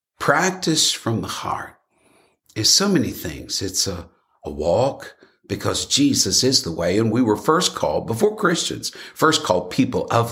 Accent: American